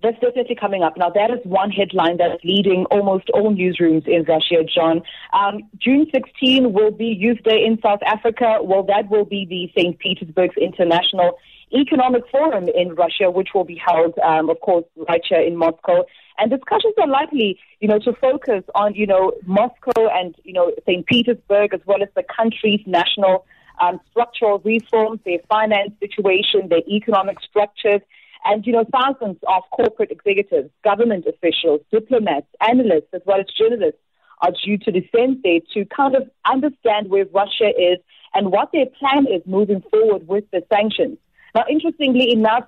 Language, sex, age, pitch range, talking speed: English, female, 30-49, 180-235 Hz, 175 wpm